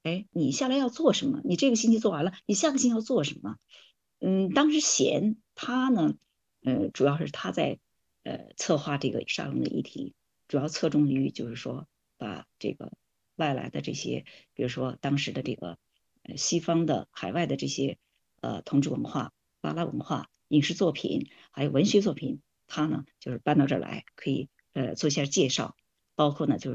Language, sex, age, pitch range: Chinese, female, 50-69, 145-225 Hz